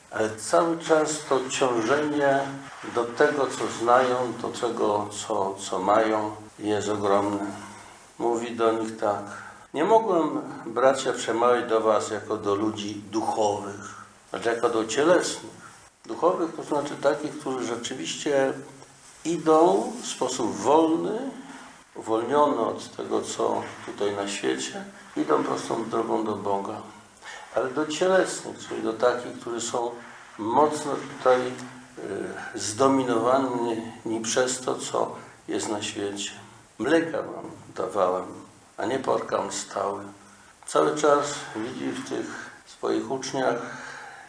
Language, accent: Polish, native